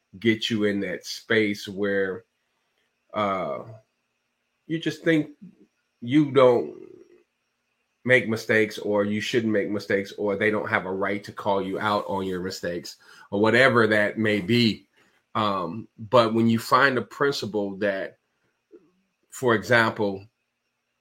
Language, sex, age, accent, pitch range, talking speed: English, male, 40-59, American, 105-125 Hz, 135 wpm